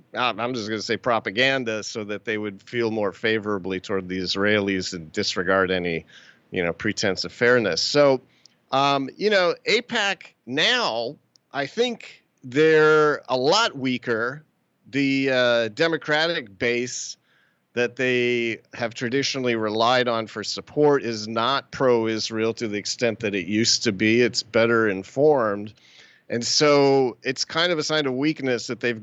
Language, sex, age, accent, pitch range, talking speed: English, male, 40-59, American, 110-135 Hz, 150 wpm